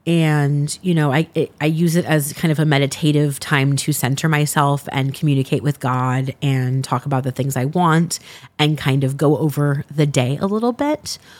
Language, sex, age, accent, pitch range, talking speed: English, female, 30-49, American, 140-170 Hz, 200 wpm